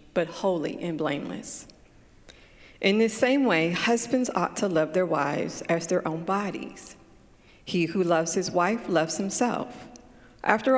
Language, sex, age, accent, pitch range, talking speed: English, female, 40-59, American, 165-210 Hz, 145 wpm